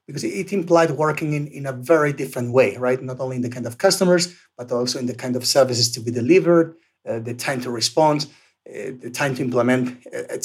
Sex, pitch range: male, 130-170 Hz